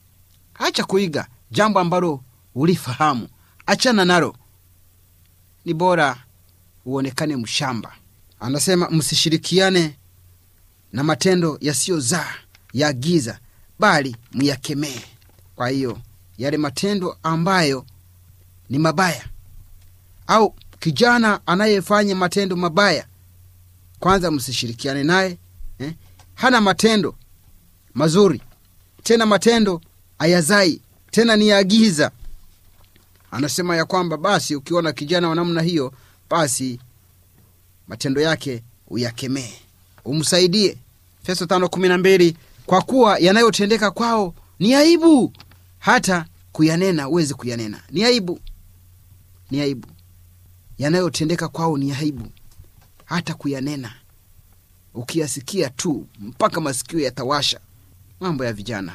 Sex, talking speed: male, 90 wpm